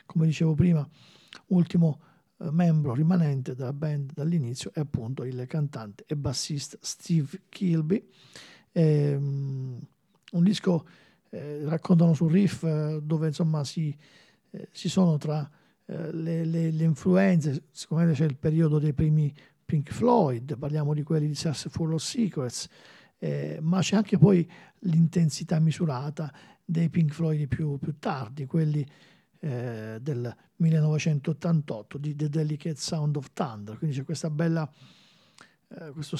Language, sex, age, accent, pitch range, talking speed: Italian, male, 50-69, native, 145-170 Hz, 135 wpm